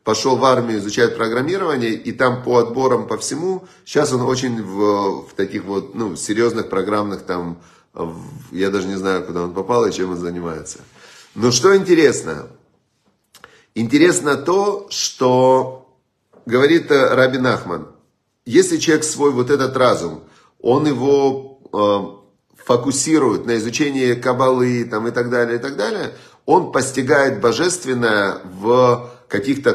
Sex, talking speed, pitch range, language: male, 135 wpm, 105-135 Hz, Russian